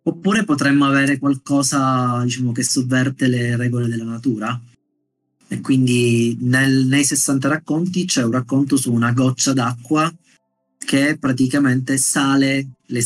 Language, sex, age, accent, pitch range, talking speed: Italian, male, 30-49, native, 120-140 Hz, 130 wpm